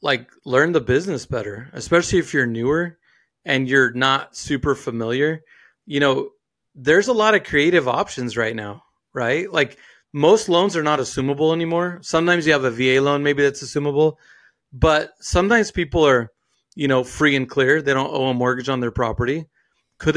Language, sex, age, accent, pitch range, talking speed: English, male, 30-49, American, 130-170 Hz, 175 wpm